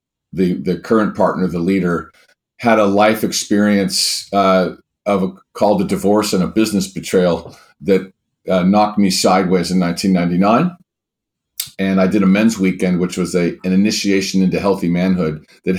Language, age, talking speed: English, 50-69, 160 wpm